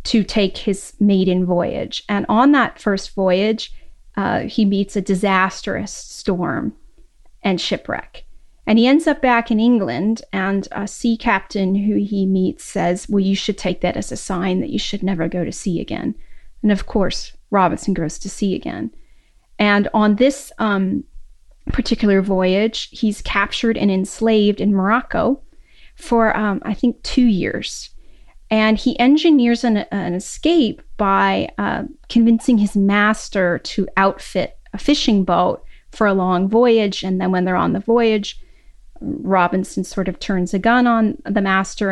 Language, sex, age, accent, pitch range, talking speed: English, female, 30-49, American, 190-230 Hz, 160 wpm